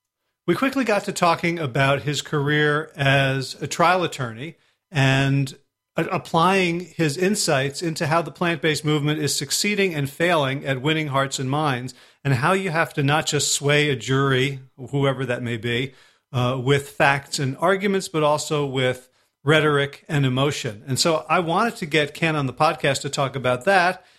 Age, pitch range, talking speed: 40-59, 135-170 Hz, 170 wpm